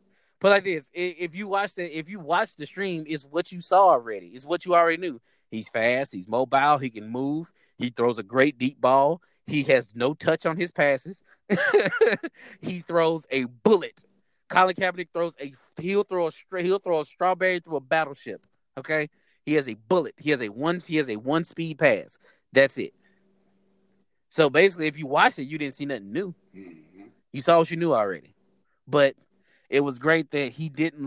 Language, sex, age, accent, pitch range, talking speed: English, male, 20-39, American, 125-175 Hz, 195 wpm